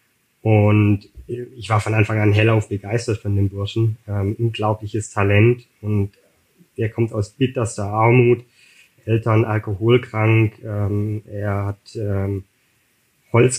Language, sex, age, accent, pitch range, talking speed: German, male, 20-39, German, 110-120 Hz, 120 wpm